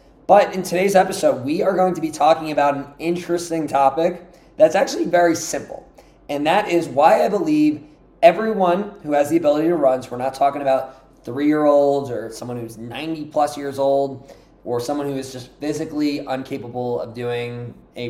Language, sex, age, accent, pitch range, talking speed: English, male, 20-39, American, 130-165 Hz, 175 wpm